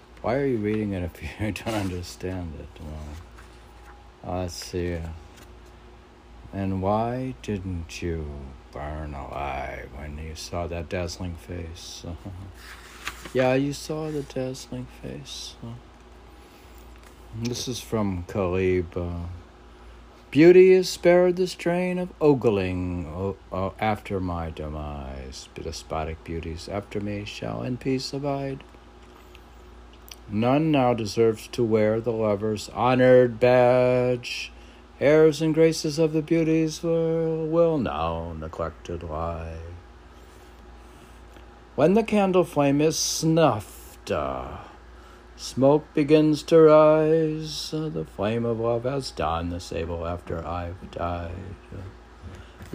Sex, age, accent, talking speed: male, 60-79, American, 115 wpm